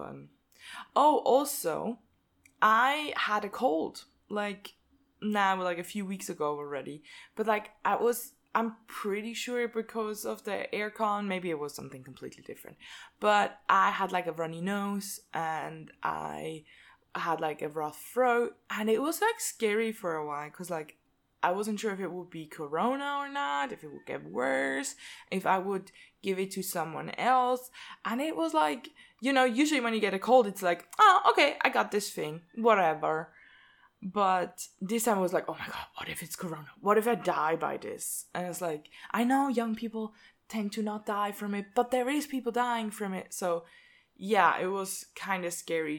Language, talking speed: English, 190 wpm